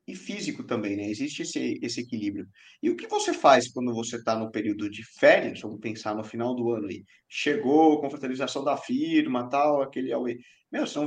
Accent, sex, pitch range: Brazilian, male, 120-150 Hz